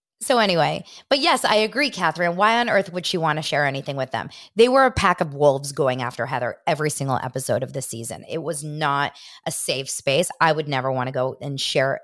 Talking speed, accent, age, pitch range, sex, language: 235 wpm, American, 20-39, 140-185 Hz, female, English